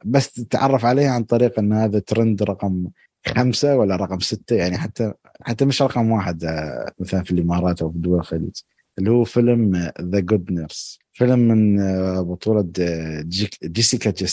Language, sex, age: Arabic, male, 20-39